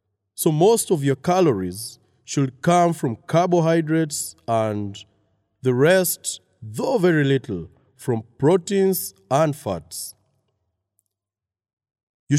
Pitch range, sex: 105-155 Hz, male